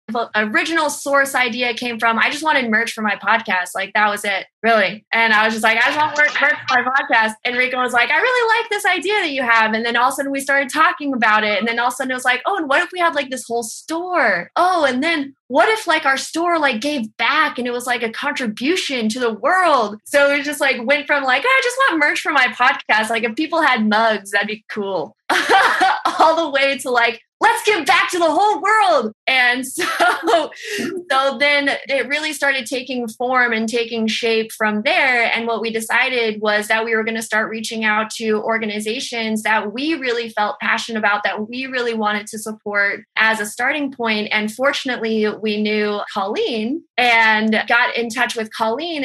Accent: American